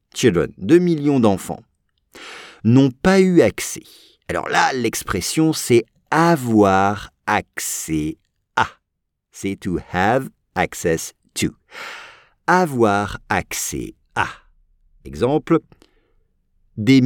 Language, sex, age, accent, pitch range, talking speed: English, male, 50-69, French, 100-160 Hz, 90 wpm